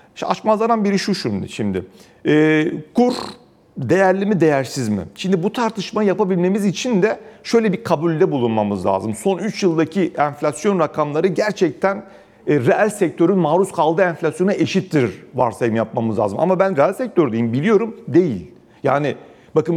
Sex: male